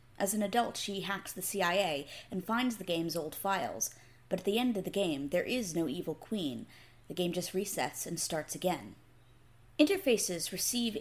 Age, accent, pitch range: 20-39, American, 155-205 Hz